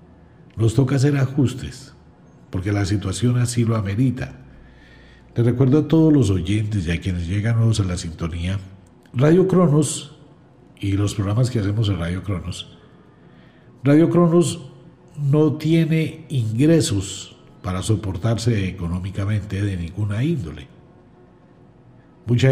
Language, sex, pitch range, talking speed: Spanish, male, 95-135 Hz, 120 wpm